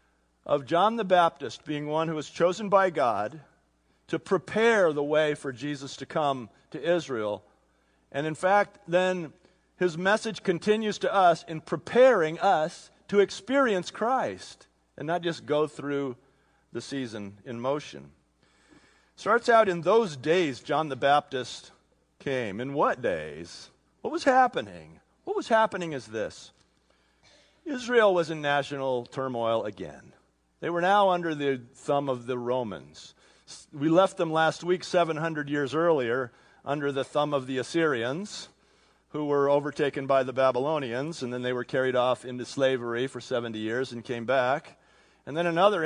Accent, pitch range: American, 130-180 Hz